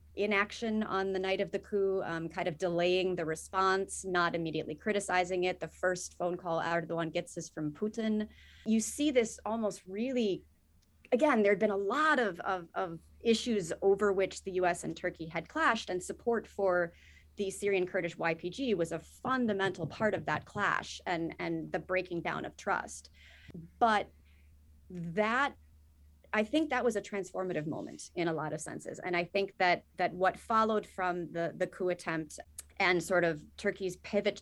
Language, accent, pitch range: English, American, 170-205 Hz